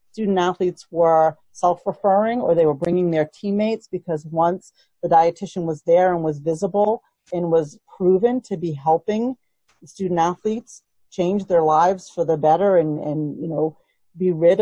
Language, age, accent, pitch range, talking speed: English, 40-59, American, 155-190 Hz, 150 wpm